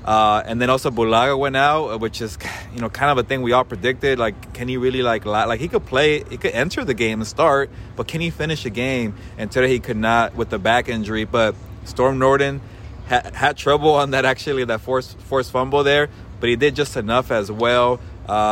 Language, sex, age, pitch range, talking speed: English, male, 20-39, 110-135 Hz, 225 wpm